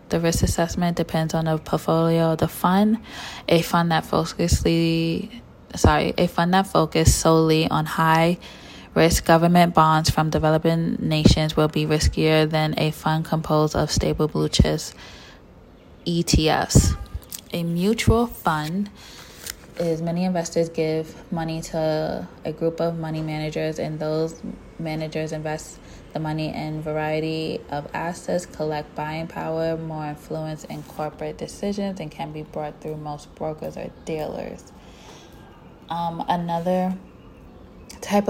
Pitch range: 155-175 Hz